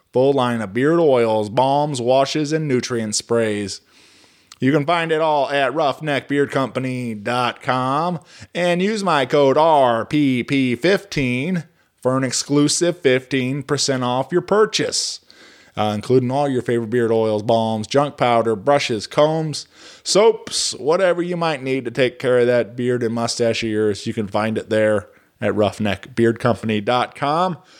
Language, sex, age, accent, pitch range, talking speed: English, male, 20-39, American, 120-155 Hz, 135 wpm